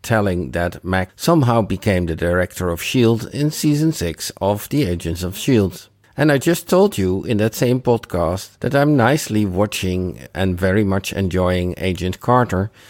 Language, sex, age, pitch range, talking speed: English, male, 50-69, 90-110 Hz, 165 wpm